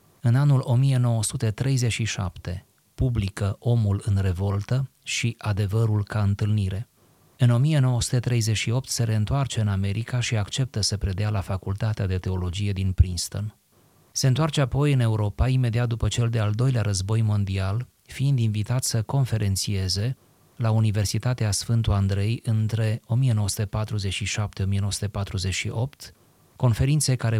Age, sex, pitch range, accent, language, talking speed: 30-49, male, 100-125 Hz, native, Romanian, 110 wpm